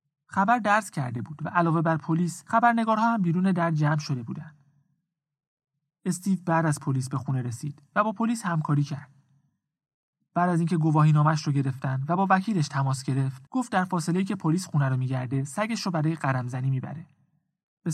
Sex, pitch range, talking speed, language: male, 140-180 Hz, 170 wpm, Persian